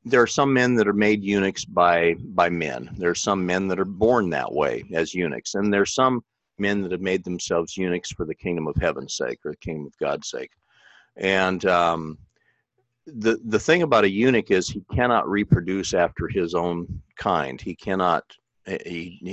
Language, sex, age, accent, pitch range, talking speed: English, male, 50-69, American, 85-105 Hz, 195 wpm